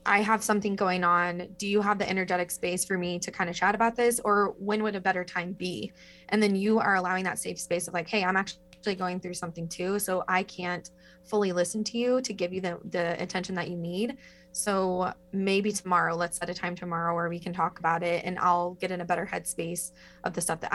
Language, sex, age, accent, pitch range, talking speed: English, female, 20-39, American, 175-200 Hz, 245 wpm